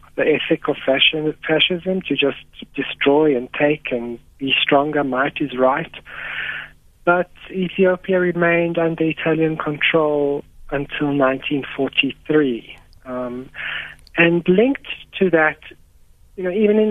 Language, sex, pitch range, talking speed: English, male, 140-170 Hz, 115 wpm